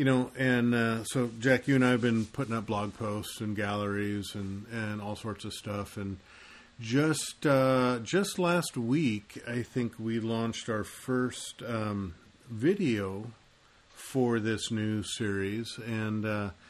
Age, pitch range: 40-59, 105-120 Hz